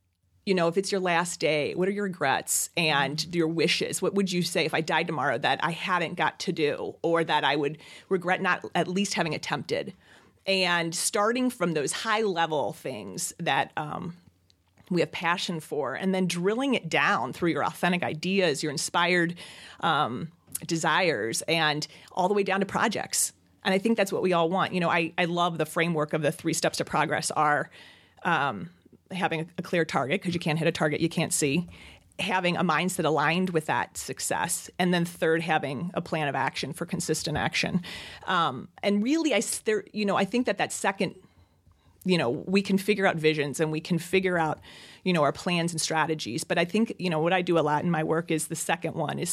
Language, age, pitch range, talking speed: English, 30-49, 155-185 Hz, 210 wpm